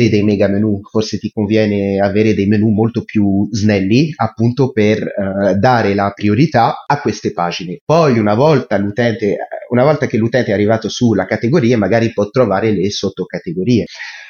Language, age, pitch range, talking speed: Italian, 30-49, 105-140 Hz, 155 wpm